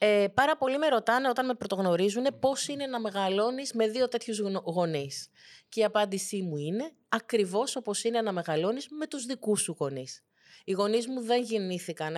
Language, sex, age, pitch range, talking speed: Greek, female, 30-49, 190-235 Hz, 175 wpm